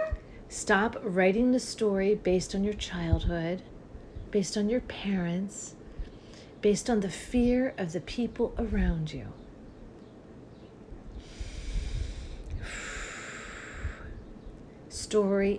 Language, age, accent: English, 40-59, American